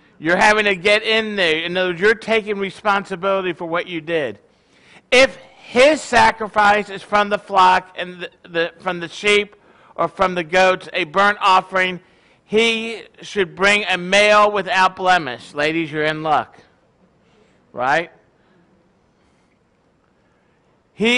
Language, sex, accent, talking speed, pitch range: English, male, American, 140 wpm, 170-205 Hz